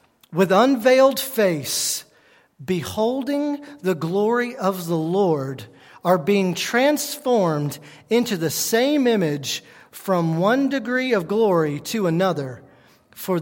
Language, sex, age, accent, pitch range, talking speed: English, male, 40-59, American, 160-270 Hz, 105 wpm